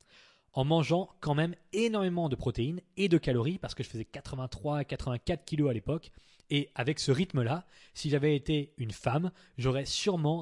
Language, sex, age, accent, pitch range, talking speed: French, male, 20-39, French, 115-145 Hz, 175 wpm